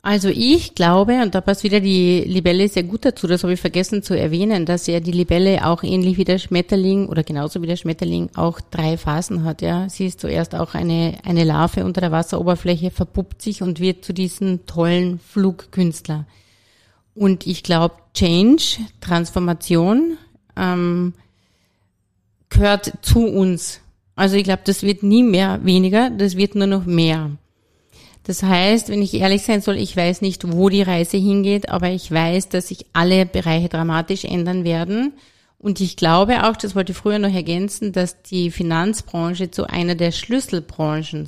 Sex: female